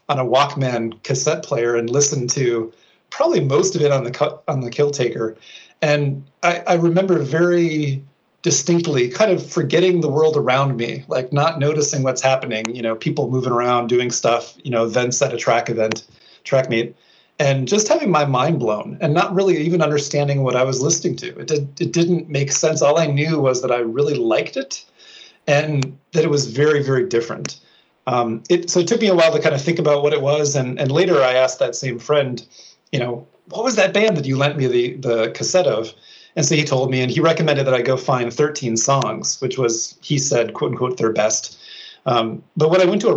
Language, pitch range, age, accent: English, 120-155 Hz, 30-49, American